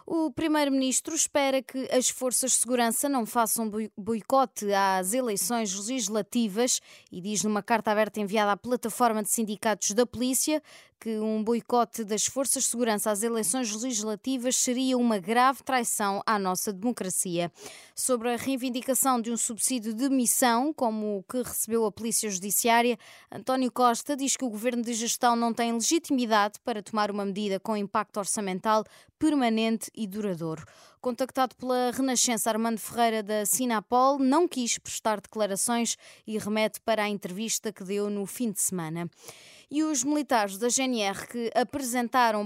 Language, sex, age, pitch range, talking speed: Portuguese, female, 20-39, 210-250 Hz, 150 wpm